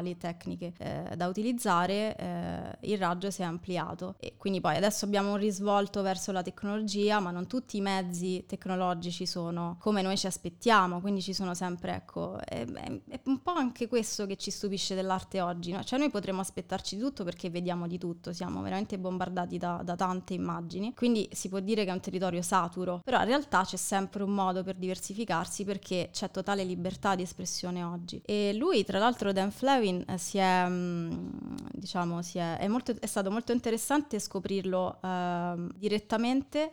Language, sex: Italian, female